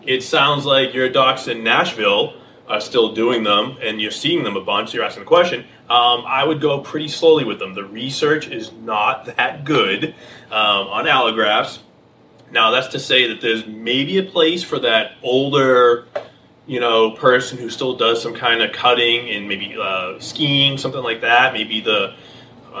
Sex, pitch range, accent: male, 115-145 Hz, American